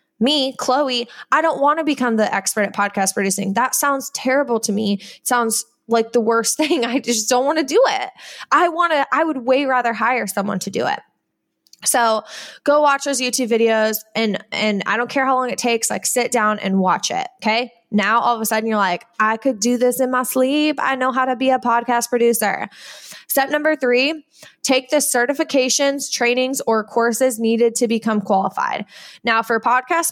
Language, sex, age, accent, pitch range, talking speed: English, female, 10-29, American, 215-270 Hz, 195 wpm